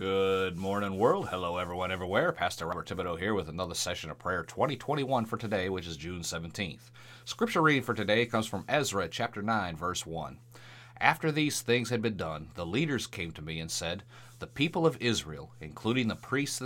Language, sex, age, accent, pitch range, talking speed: English, male, 30-49, American, 100-125 Hz, 190 wpm